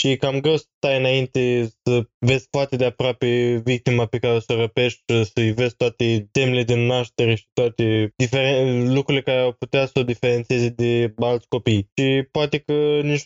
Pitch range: 120-140 Hz